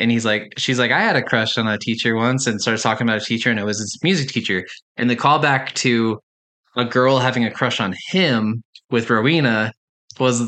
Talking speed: 225 wpm